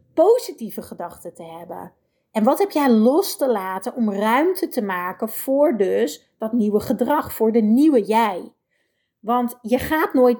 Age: 40-59